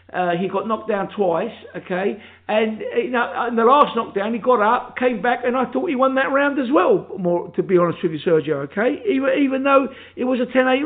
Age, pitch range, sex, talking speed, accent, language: 50-69, 180-255 Hz, male, 240 wpm, British, English